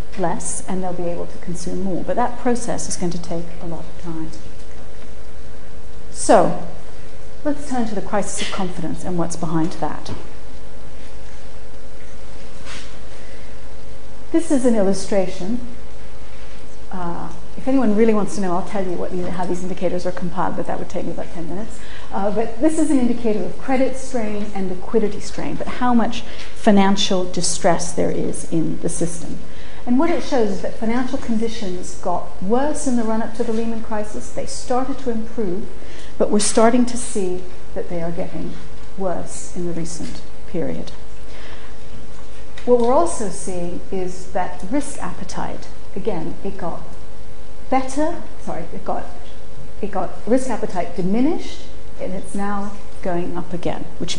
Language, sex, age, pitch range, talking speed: English, female, 40-59, 165-230 Hz, 155 wpm